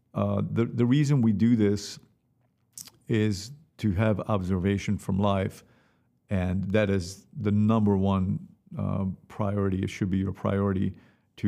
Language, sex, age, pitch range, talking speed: English, male, 50-69, 95-105 Hz, 140 wpm